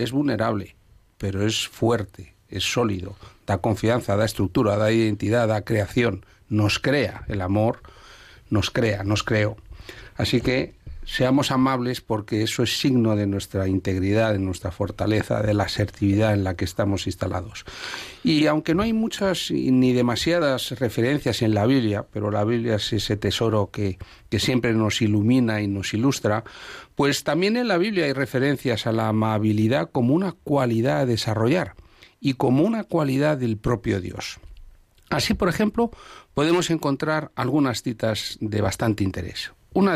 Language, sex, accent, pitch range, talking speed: Spanish, male, Spanish, 100-135 Hz, 155 wpm